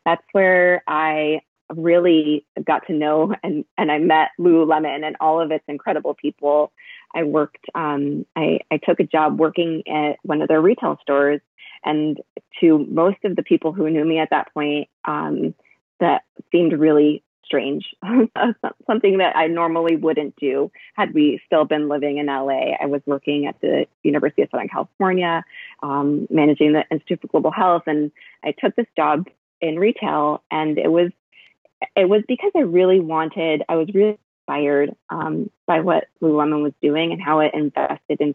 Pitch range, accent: 150-180 Hz, American